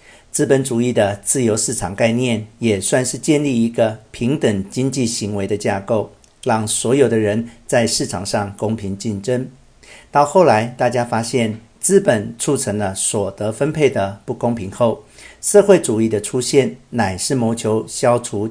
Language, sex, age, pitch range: Chinese, male, 50-69, 110-130 Hz